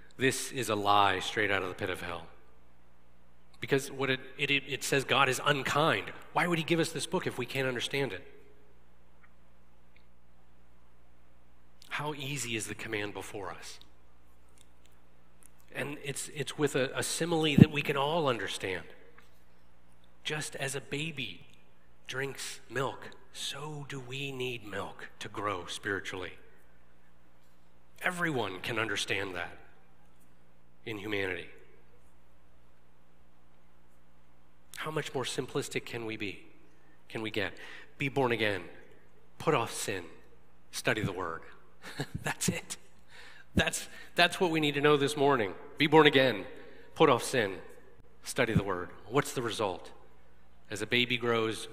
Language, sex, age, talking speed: English, male, 40-59, 135 wpm